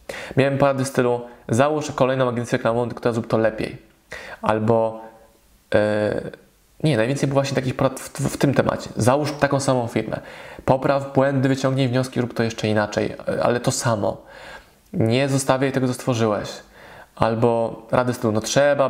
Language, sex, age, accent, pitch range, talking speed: Polish, male, 20-39, native, 115-135 Hz, 155 wpm